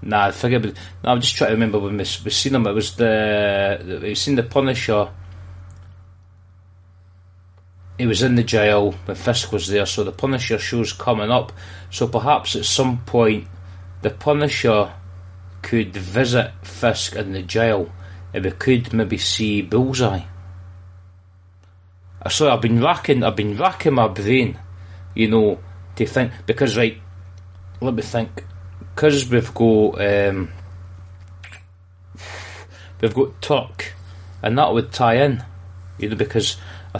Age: 30-49